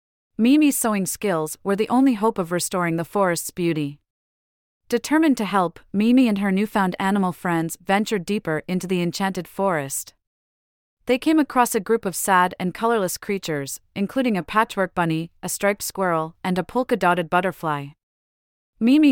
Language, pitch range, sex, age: English, 165-220 Hz, female, 30-49